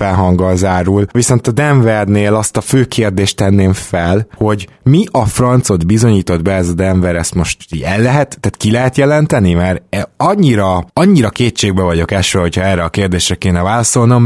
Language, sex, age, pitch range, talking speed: Hungarian, male, 20-39, 95-120 Hz, 170 wpm